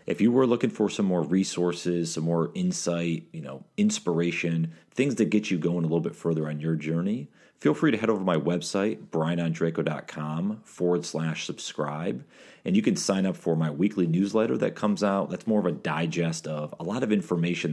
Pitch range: 80-95 Hz